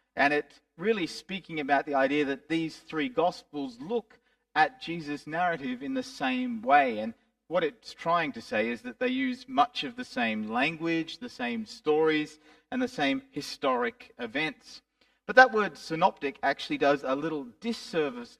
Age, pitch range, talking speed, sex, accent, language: 40-59, 160-250 Hz, 165 wpm, male, Australian, English